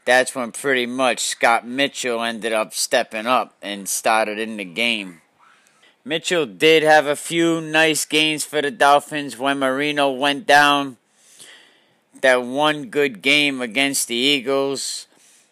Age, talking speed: 40-59, 140 wpm